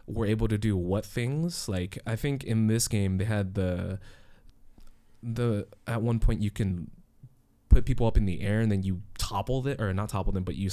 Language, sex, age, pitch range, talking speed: English, male, 20-39, 95-115 Hz, 215 wpm